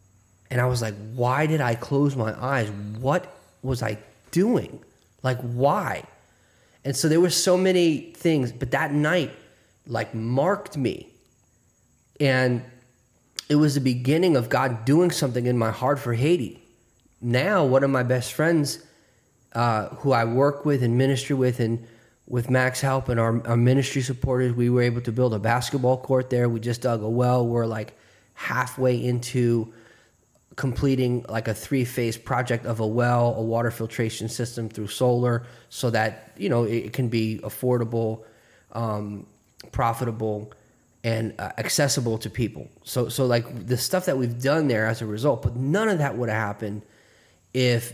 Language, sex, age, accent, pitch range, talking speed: English, male, 30-49, American, 115-135 Hz, 165 wpm